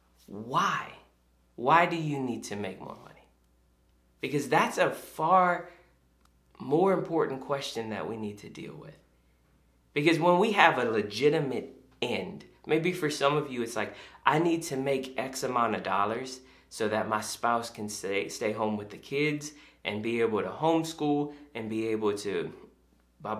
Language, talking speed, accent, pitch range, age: English, 165 wpm, American, 95-135 Hz, 20-39